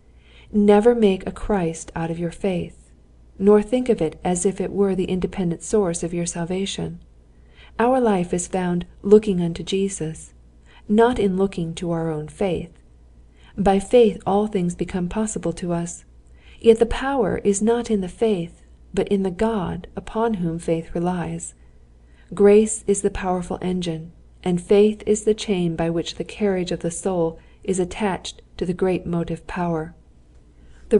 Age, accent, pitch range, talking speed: 40-59, American, 165-205 Hz, 165 wpm